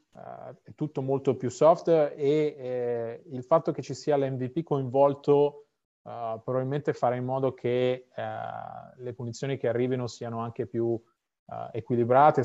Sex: male